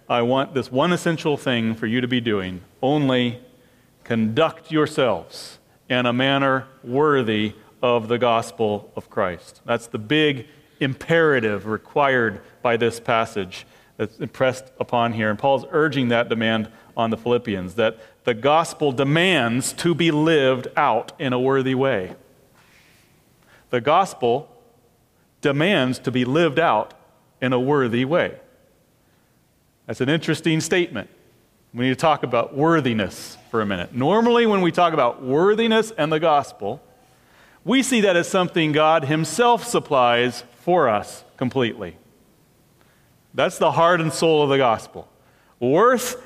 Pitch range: 120-160 Hz